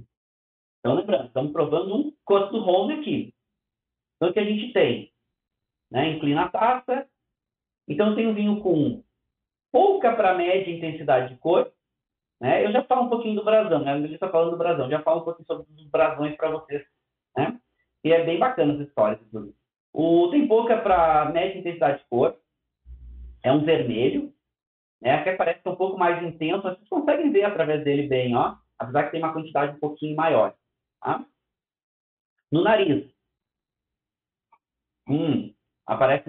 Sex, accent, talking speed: male, Brazilian, 165 wpm